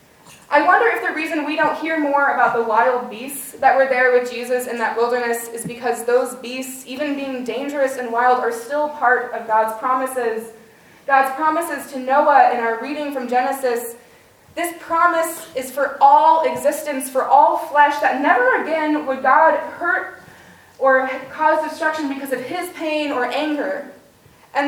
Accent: American